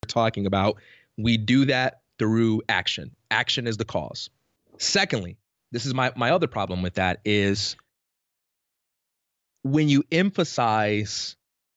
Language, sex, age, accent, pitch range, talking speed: English, male, 30-49, American, 115-140 Hz, 120 wpm